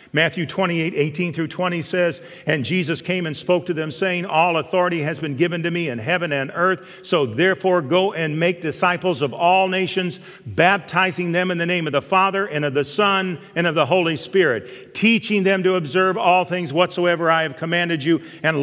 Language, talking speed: English, 205 wpm